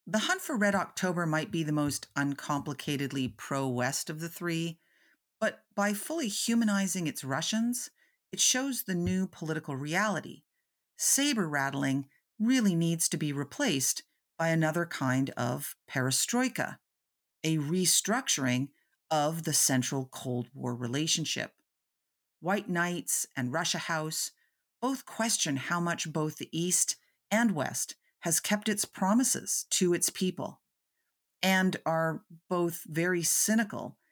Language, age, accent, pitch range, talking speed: English, 40-59, American, 140-205 Hz, 125 wpm